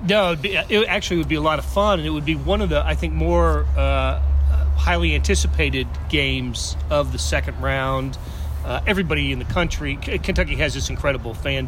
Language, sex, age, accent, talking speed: English, male, 40-59, American, 205 wpm